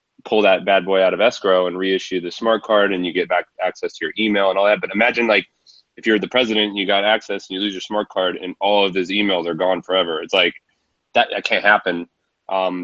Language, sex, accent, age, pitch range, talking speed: English, male, American, 20-39, 90-105 Hz, 255 wpm